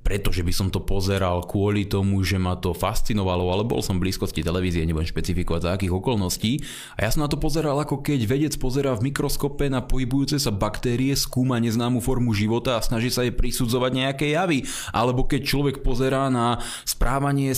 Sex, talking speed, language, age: male, 190 wpm, Slovak, 20-39